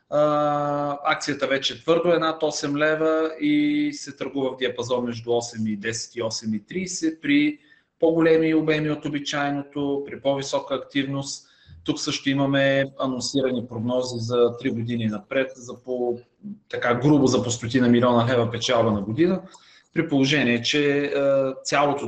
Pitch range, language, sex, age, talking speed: 125-165 Hz, Bulgarian, male, 30-49, 140 wpm